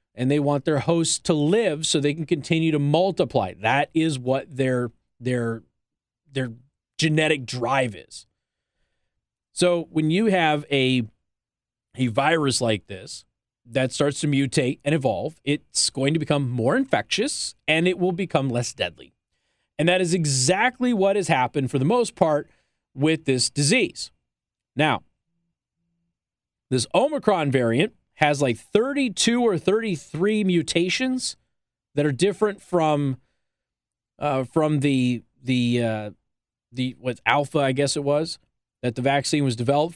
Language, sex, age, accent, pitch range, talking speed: English, male, 30-49, American, 125-170 Hz, 140 wpm